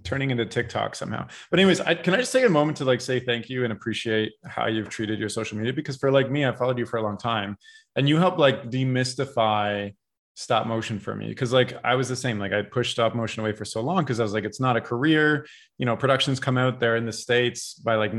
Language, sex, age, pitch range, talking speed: English, male, 20-39, 115-135 Hz, 260 wpm